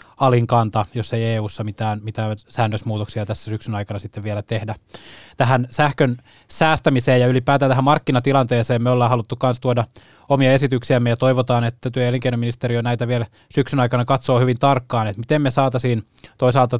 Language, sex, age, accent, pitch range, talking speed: Finnish, male, 20-39, native, 115-135 Hz, 155 wpm